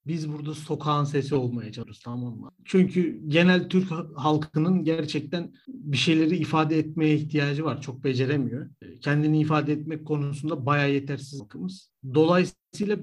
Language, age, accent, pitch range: Turkish, 50-69, native, 145-210 Hz